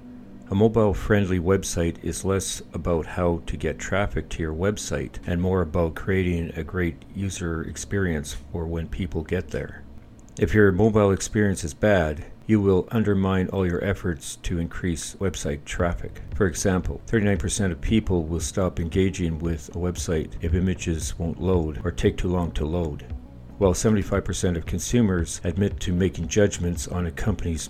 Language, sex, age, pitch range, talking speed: English, male, 60-79, 80-100 Hz, 165 wpm